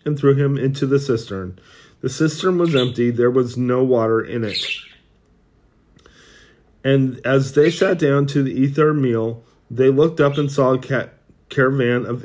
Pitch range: 115-140 Hz